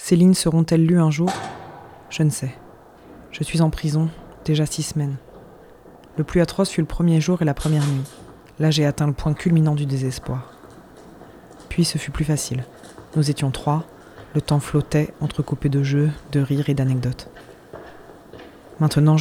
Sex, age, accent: female, 20-39, French